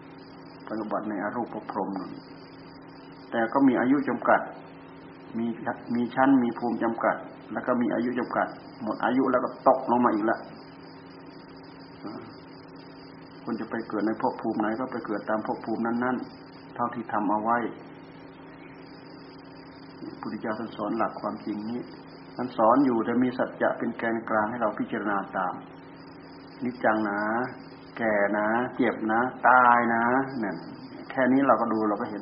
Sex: male